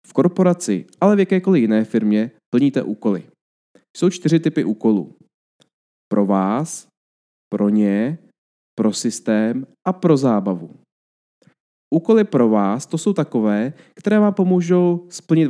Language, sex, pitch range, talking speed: Czech, male, 110-165 Hz, 125 wpm